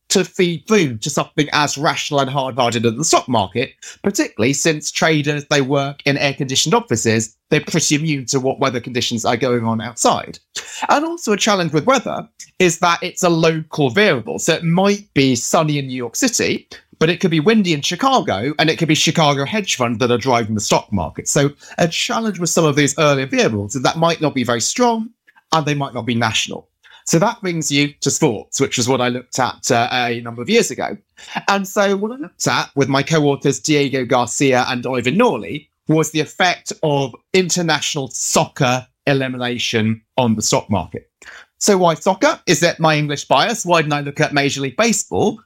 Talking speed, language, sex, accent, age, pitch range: 205 wpm, English, male, British, 30-49, 135-175 Hz